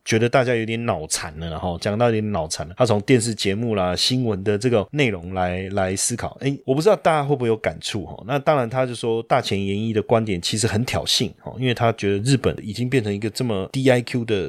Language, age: Chinese, 20-39